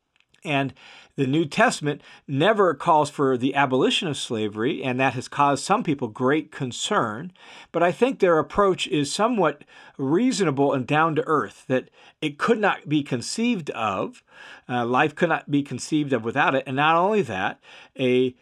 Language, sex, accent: English, male, American